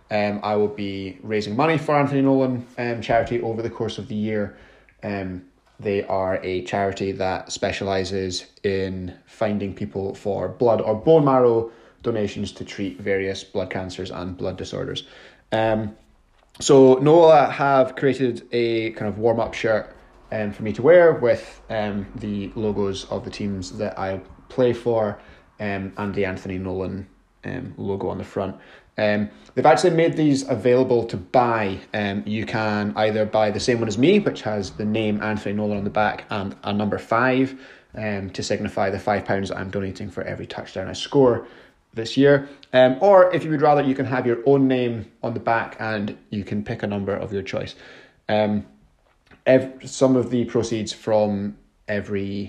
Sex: male